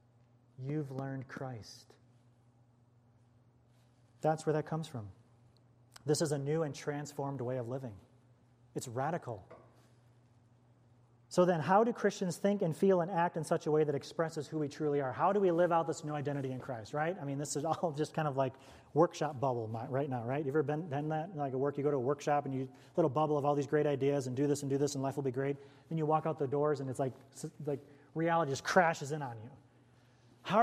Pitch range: 120-165 Hz